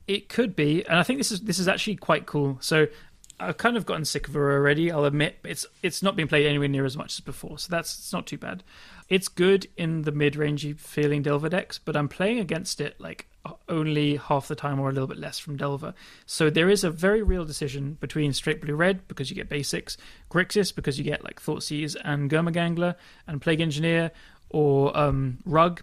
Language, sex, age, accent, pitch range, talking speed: English, male, 30-49, British, 145-175 Hz, 220 wpm